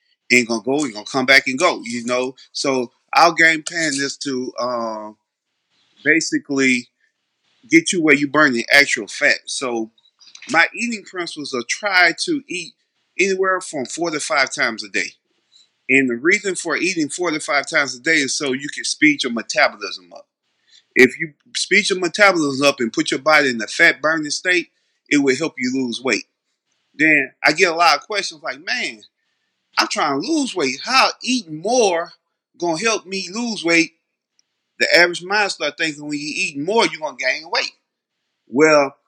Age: 30-49